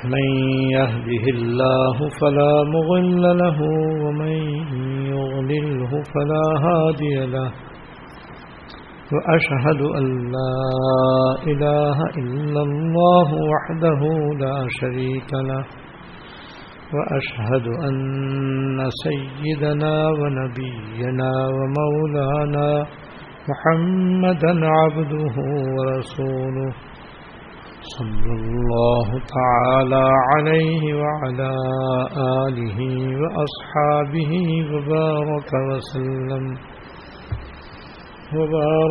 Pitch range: 130-155 Hz